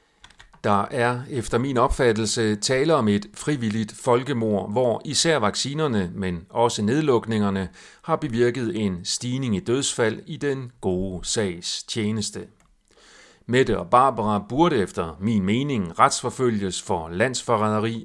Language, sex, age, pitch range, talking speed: Danish, male, 40-59, 105-130 Hz, 125 wpm